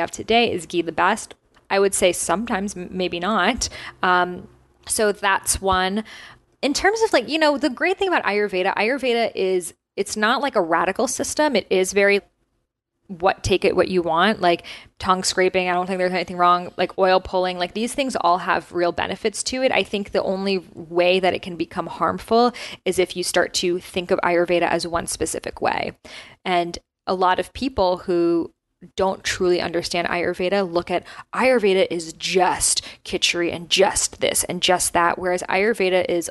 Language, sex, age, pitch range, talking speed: English, female, 20-39, 175-210 Hz, 185 wpm